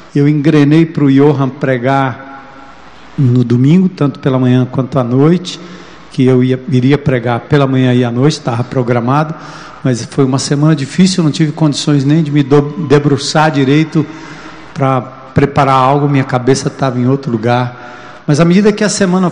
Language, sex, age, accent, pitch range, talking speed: Portuguese, male, 60-79, Brazilian, 130-160 Hz, 165 wpm